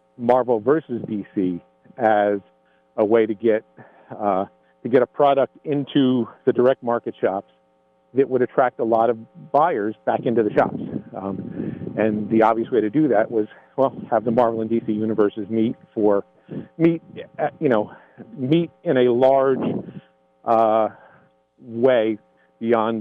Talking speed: 150 wpm